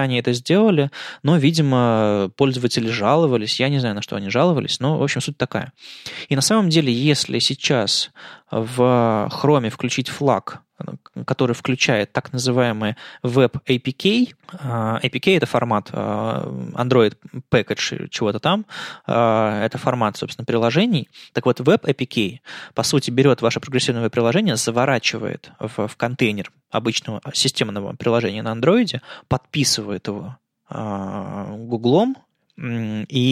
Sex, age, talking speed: male, 20-39, 135 wpm